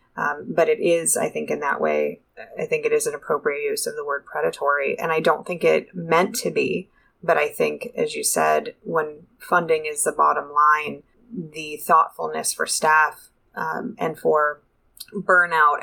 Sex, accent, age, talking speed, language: female, American, 20-39, 180 wpm, English